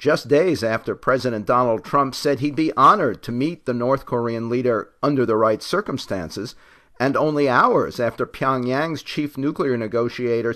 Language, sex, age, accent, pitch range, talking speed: English, male, 50-69, American, 120-145 Hz, 160 wpm